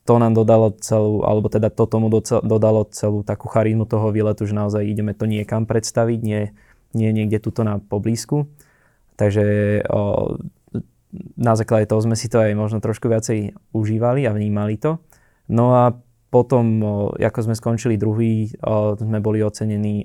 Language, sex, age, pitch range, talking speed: Slovak, male, 20-39, 105-115 Hz, 160 wpm